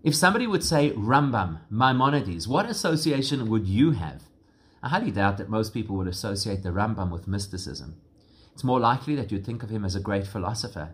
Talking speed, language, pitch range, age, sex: 190 wpm, English, 100-130 Hz, 30-49, male